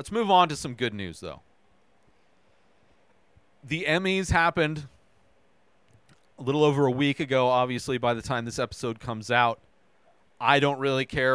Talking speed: 155 wpm